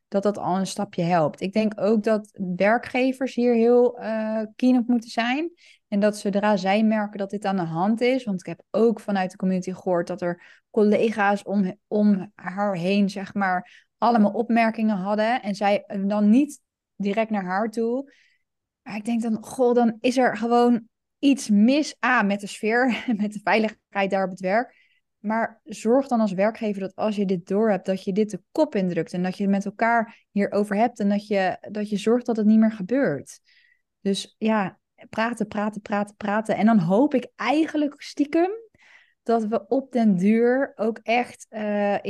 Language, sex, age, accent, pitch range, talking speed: Dutch, female, 20-39, Dutch, 200-235 Hz, 185 wpm